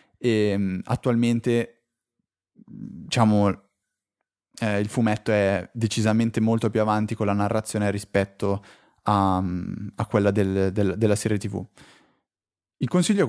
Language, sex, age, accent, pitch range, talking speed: Italian, male, 20-39, native, 105-130 Hz, 110 wpm